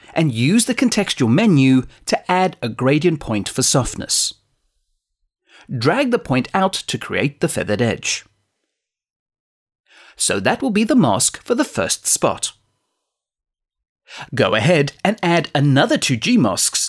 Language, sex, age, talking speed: English, male, 30-49, 140 wpm